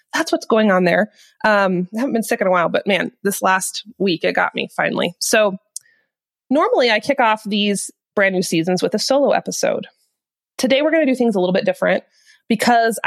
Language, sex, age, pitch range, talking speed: English, female, 20-39, 185-240 Hz, 210 wpm